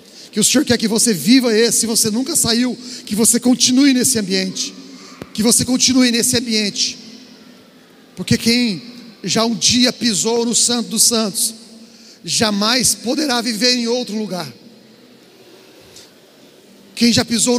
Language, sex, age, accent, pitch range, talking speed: Portuguese, male, 40-59, Brazilian, 215-250 Hz, 140 wpm